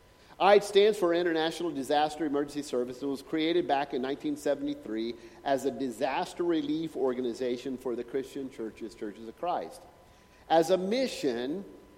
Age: 50-69